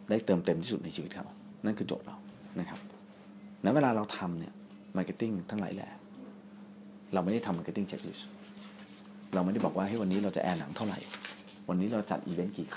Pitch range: 95-110 Hz